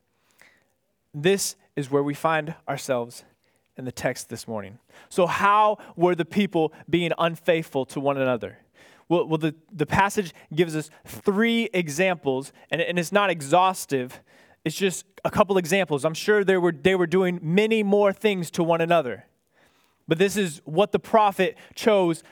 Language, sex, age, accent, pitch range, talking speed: English, male, 20-39, American, 155-205 Hz, 155 wpm